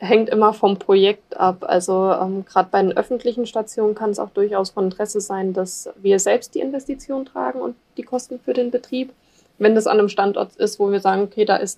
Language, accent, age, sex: German, German, 20-39, female